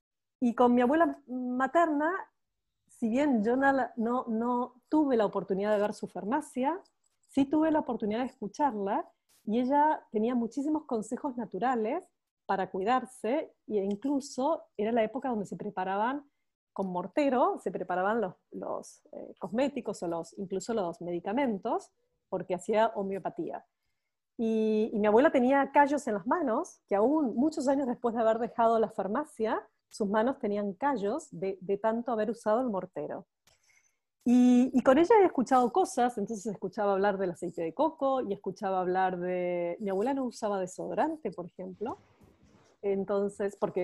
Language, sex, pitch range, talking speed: English, female, 200-280 Hz, 155 wpm